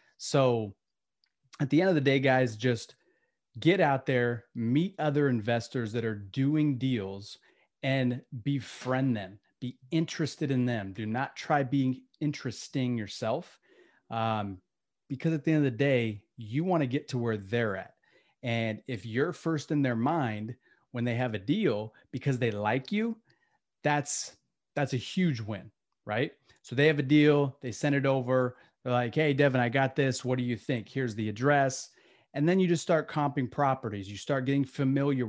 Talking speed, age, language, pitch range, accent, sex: 175 wpm, 30-49, English, 115-145 Hz, American, male